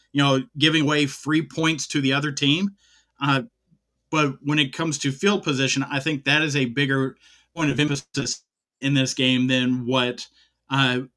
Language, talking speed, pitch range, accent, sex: English, 175 wpm, 130-155 Hz, American, male